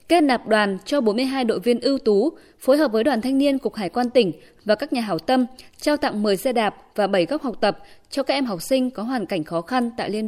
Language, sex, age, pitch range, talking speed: Vietnamese, female, 20-39, 205-265 Hz, 270 wpm